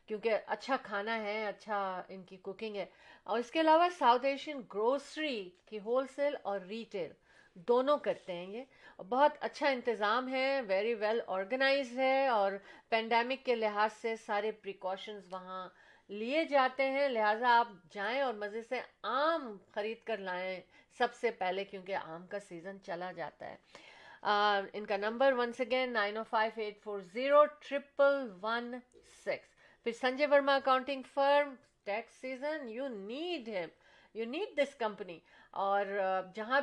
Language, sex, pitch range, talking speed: Urdu, female, 200-275 Hz, 145 wpm